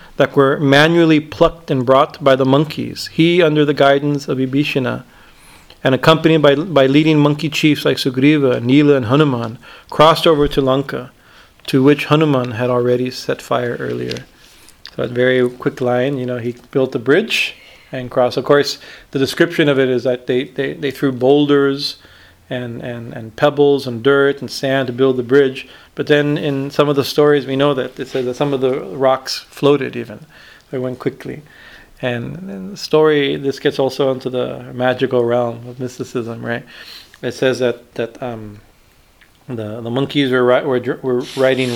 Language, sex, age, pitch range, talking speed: English, male, 40-59, 125-145 Hz, 185 wpm